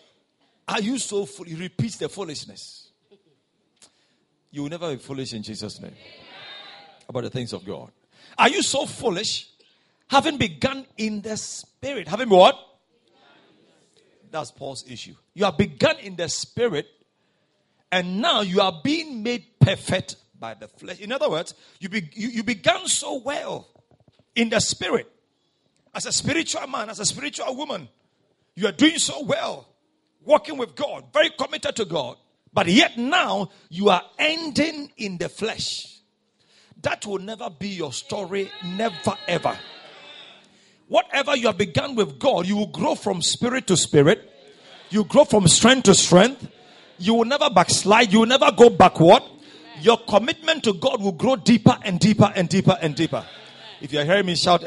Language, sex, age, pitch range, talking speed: English, male, 50-69, 175-260 Hz, 160 wpm